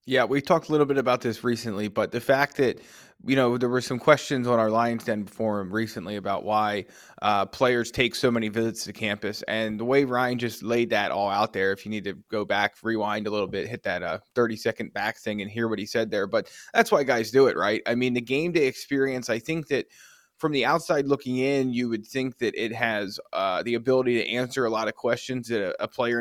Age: 20-39